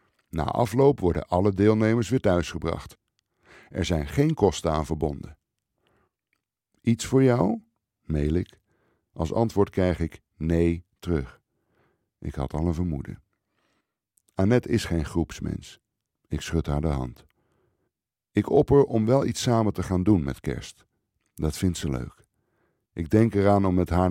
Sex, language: male, Dutch